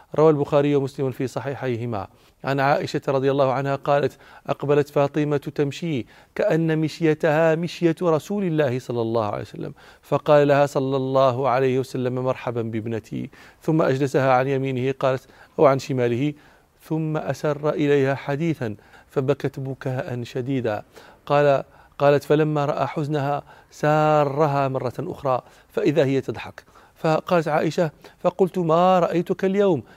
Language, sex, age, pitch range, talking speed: Arabic, male, 40-59, 135-165 Hz, 125 wpm